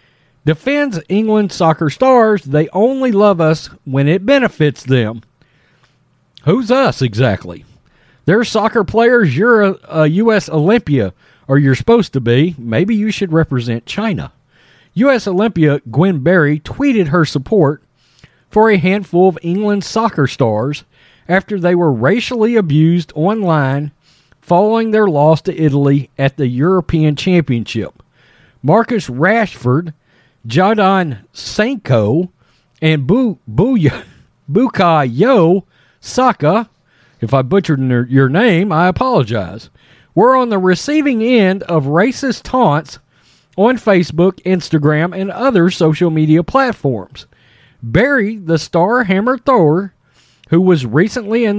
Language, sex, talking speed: English, male, 115 wpm